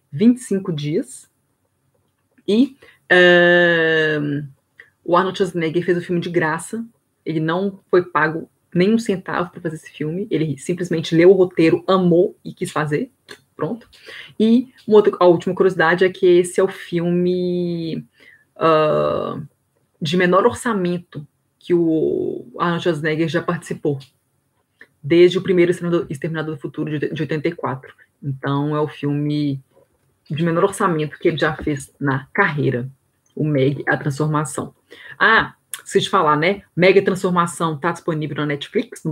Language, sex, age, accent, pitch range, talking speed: Portuguese, female, 20-39, Brazilian, 145-185 Hz, 135 wpm